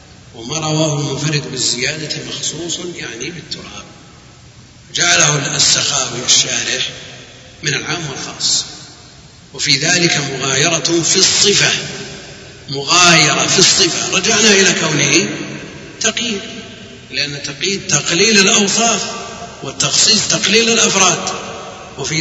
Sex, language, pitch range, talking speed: male, Arabic, 140-185 Hz, 90 wpm